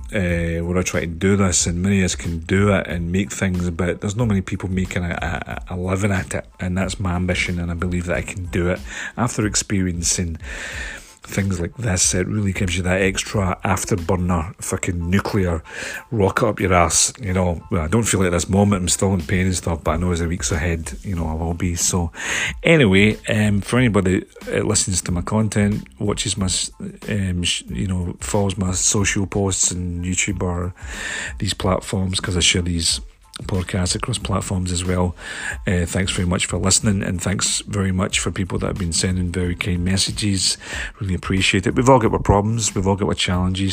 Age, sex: 40-59, male